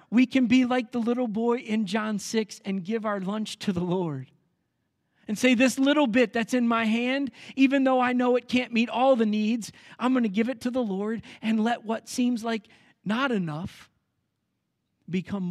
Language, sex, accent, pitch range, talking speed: English, male, American, 210-255 Hz, 200 wpm